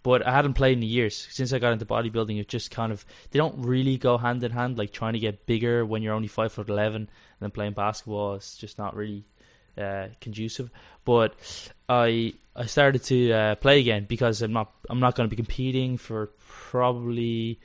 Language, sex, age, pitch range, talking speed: English, male, 20-39, 110-130 Hz, 210 wpm